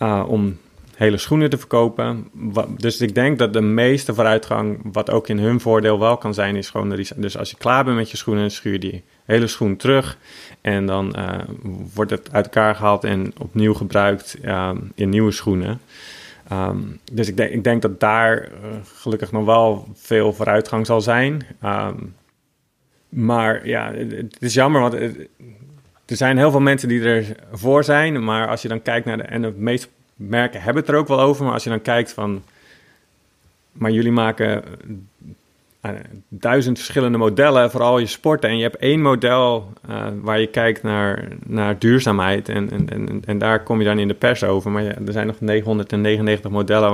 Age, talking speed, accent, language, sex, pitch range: 30-49, 190 wpm, Dutch, Dutch, male, 105-120 Hz